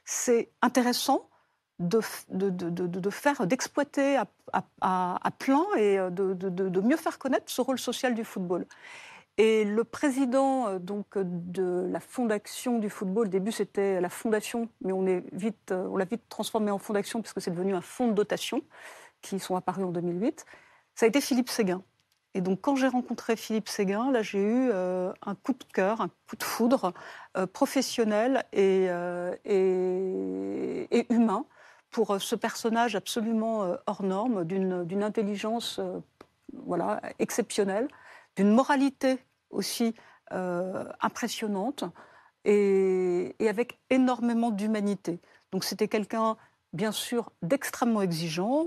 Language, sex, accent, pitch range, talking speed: French, female, French, 190-240 Hz, 150 wpm